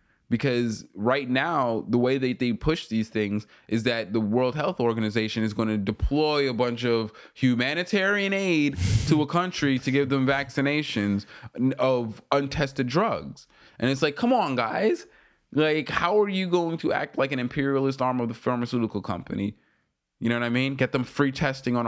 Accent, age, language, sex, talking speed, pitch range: American, 20-39, English, male, 180 wpm, 110-140 Hz